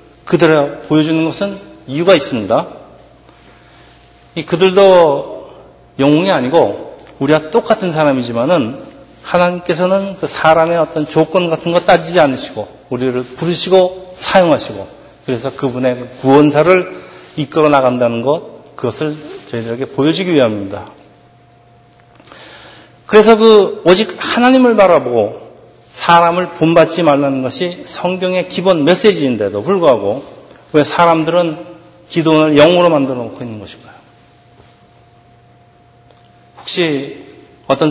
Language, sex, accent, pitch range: Korean, male, native, 120-170 Hz